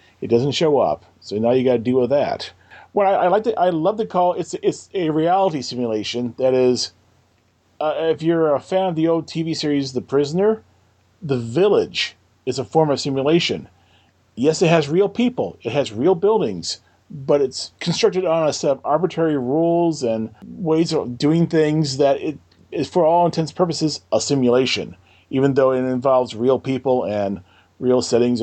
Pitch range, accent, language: 120-165 Hz, American, English